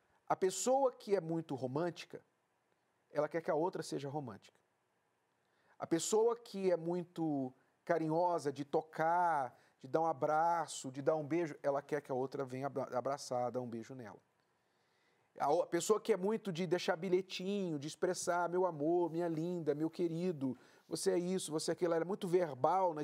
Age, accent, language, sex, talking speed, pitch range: 40-59, Brazilian, Portuguese, male, 175 wpm, 155-200 Hz